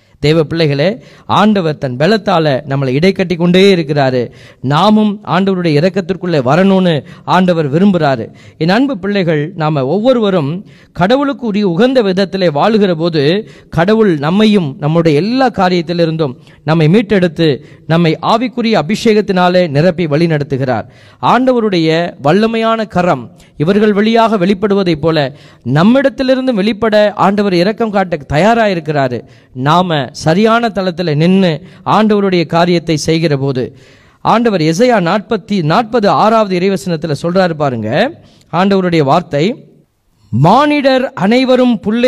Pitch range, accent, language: 155-215 Hz, native, Tamil